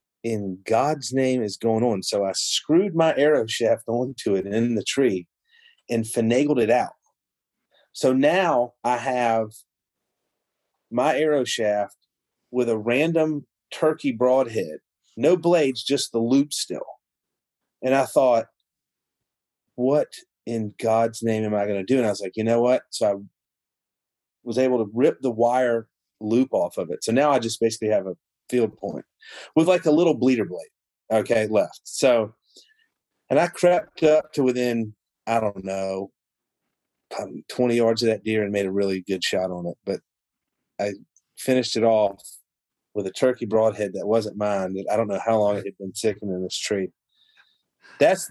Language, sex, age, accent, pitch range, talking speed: English, male, 40-59, American, 105-130 Hz, 170 wpm